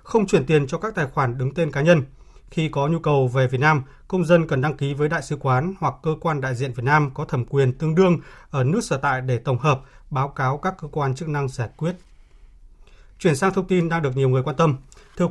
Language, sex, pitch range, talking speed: Vietnamese, male, 135-170 Hz, 260 wpm